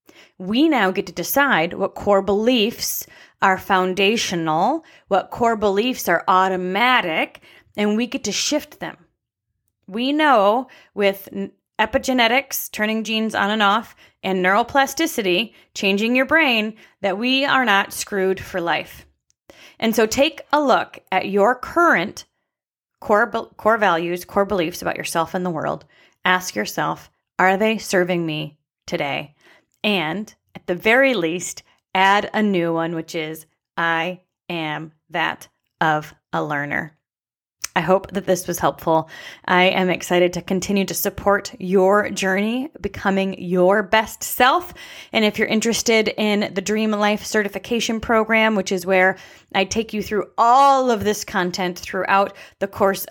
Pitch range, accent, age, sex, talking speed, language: 180-225 Hz, American, 30-49, female, 145 wpm, English